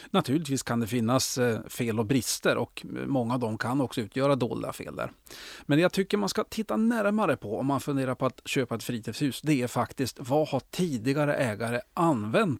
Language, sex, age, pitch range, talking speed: Swedish, male, 40-59, 120-160 Hz, 190 wpm